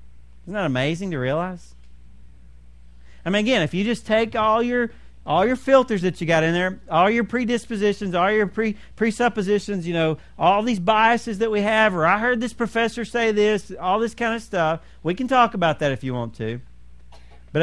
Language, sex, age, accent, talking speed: English, male, 40-59, American, 200 wpm